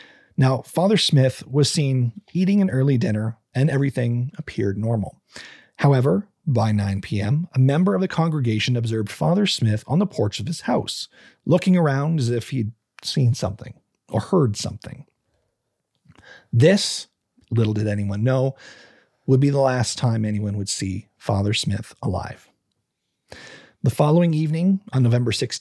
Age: 40-59